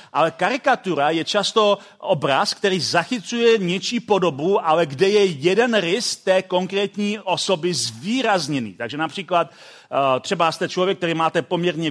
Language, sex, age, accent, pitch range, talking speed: Czech, male, 40-59, native, 170-210 Hz, 130 wpm